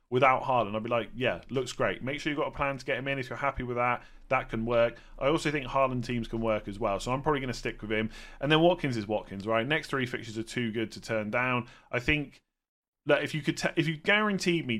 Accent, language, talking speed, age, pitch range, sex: British, English, 280 wpm, 30-49, 110-135 Hz, male